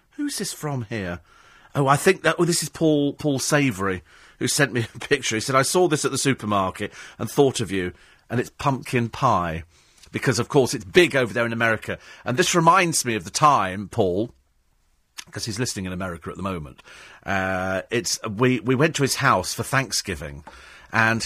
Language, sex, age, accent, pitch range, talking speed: English, male, 40-59, British, 105-145 Hz, 200 wpm